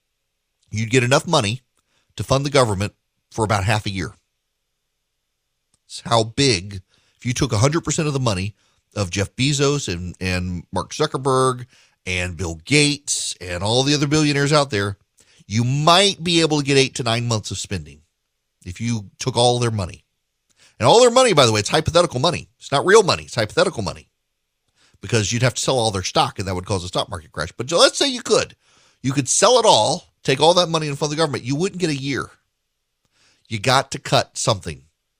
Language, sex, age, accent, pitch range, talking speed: English, male, 40-59, American, 100-145 Hz, 205 wpm